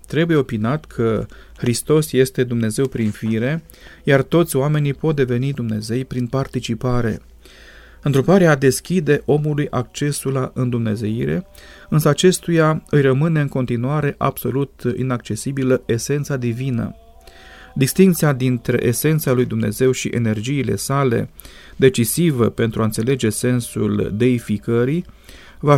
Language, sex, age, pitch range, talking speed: Romanian, male, 30-49, 120-175 Hz, 110 wpm